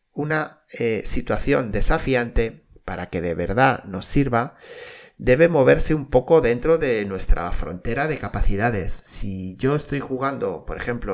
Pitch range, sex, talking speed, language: 105-135 Hz, male, 140 wpm, Spanish